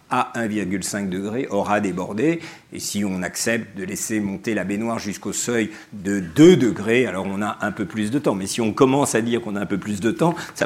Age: 50-69